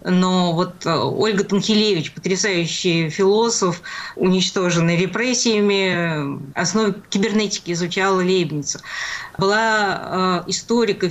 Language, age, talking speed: Russian, 20-39, 75 wpm